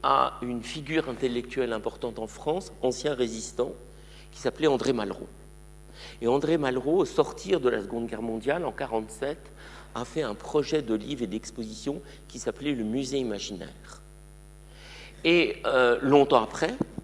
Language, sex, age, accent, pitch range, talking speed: French, male, 50-69, French, 115-155 Hz, 150 wpm